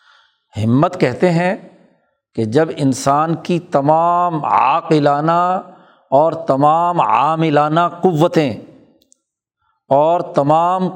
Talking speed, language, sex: 80 wpm, Urdu, male